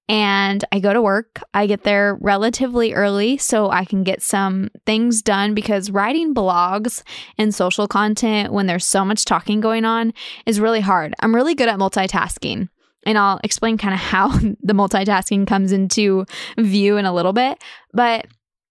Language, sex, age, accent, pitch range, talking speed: English, female, 10-29, American, 195-225 Hz, 175 wpm